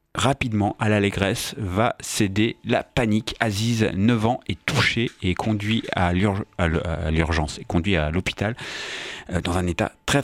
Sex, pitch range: male, 95-120 Hz